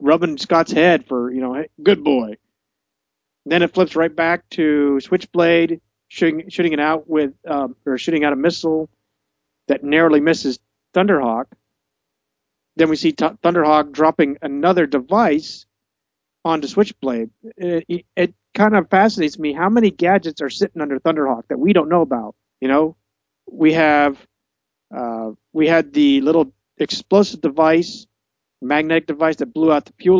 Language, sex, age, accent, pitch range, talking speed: English, male, 40-59, American, 125-170 Hz, 150 wpm